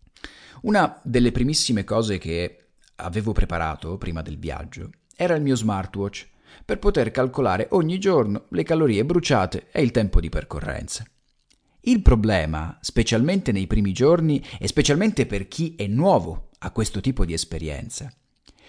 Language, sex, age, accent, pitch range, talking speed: Italian, male, 40-59, native, 95-150 Hz, 140 wpm